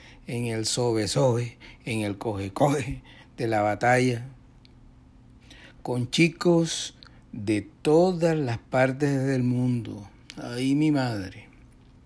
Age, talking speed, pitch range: 60-79, 100 wpm, 110-135 Hz